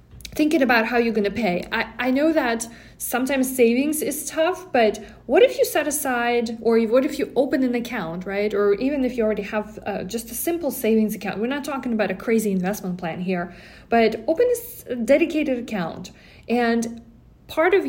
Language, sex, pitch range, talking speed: English, female, 210-265 Hz, 195 wpm